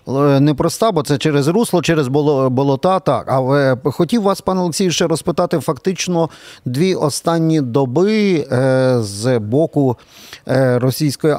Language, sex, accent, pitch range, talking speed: Ukrainian, male, native, 130-160 Hz, 115 wpm